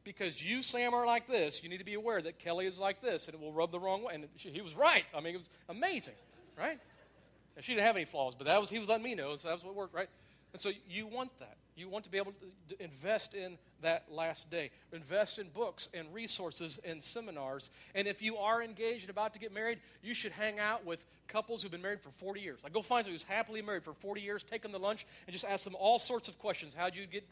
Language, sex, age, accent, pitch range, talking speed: English, male, 40-59, American, 165-220 Hz, 275 wpm